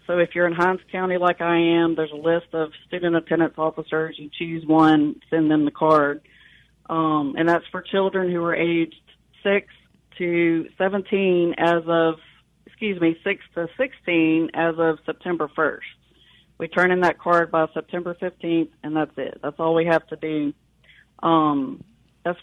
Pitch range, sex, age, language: 160-185 Hz, female, 40-59, English